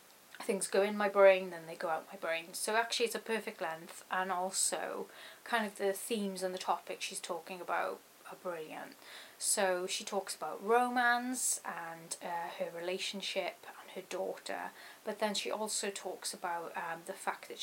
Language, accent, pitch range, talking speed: English, British, 175-210 Hz, 180 wpm